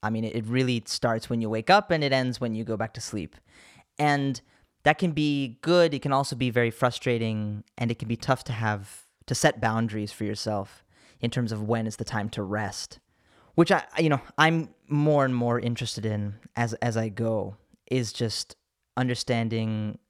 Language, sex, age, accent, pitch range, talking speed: English, male, 10-29, American, 110-130 Hz, 200 wpm